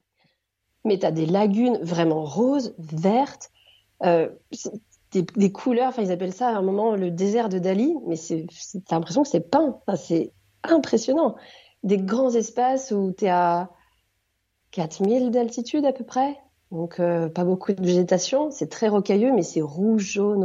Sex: female